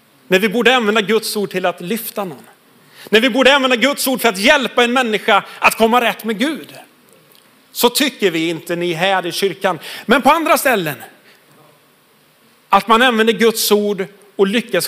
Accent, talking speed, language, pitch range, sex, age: native, 180 wpm, Swedish, 195-255 Hz, male, 40-59